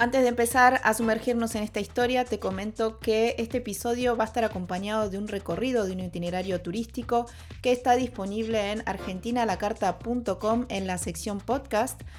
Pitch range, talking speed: 185-235 Hz, 160 wpm